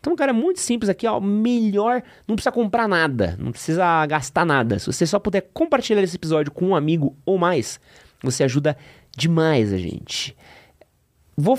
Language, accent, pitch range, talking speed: Portuguese, Brazilian, 135-220 Hz, 175 wpm